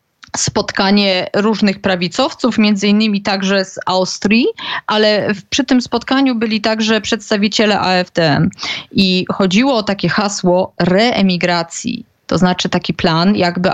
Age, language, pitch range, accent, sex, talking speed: 20-39, Polish, 180-225 Hz, native, female, 120 wpm